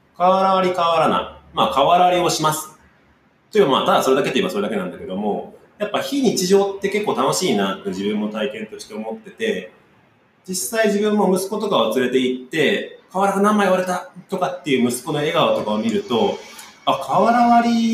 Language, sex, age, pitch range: Japanese, male, 30-49, 155-220 Hz